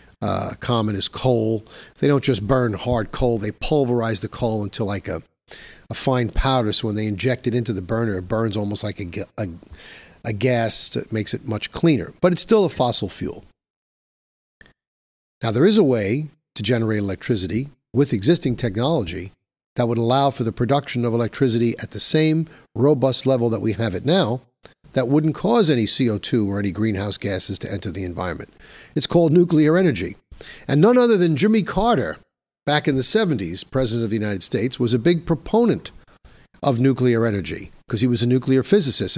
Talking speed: 185 wpm